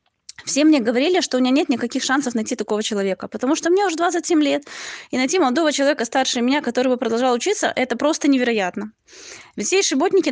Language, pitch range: Russian, 225-300 Hz